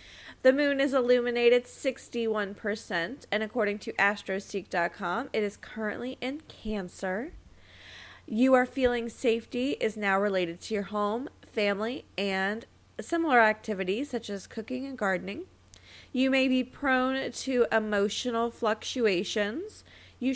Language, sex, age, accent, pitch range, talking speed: English, female, 20-39, American, 185-245 Hz, 120 wpm